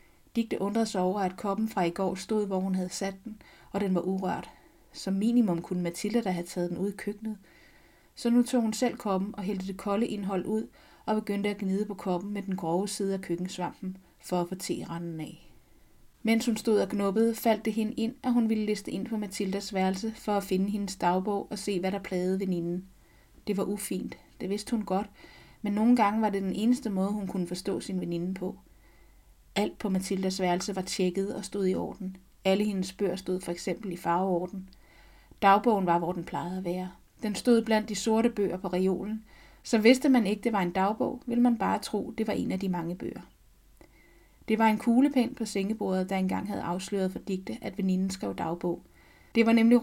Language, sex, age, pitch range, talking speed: Danish, female, 30-49, 185-215 Hz, 215 wpm